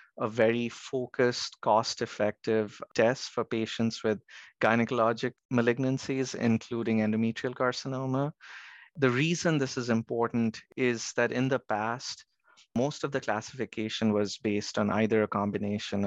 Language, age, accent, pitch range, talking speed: English, 30-49, Indian, 110-125 Hz, 125 wpm